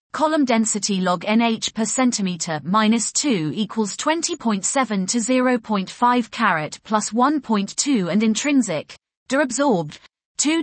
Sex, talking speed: female, 105 wpm